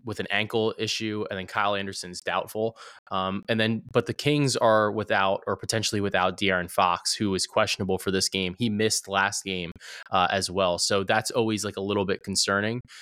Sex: male